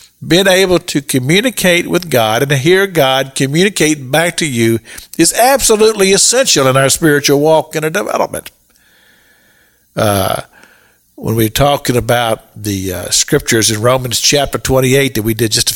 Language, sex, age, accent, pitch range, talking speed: English, male, 50-69, American, 120-180 Hz, 155 wpm